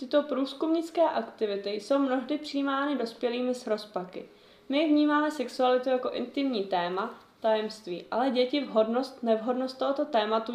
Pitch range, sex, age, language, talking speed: 215-270 Hz, female, 20-39, Czech, 125 wpm